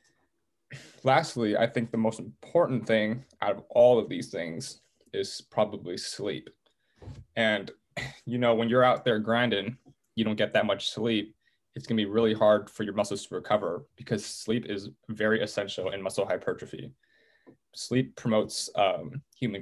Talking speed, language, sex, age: 160 wpm, English, male, 20-39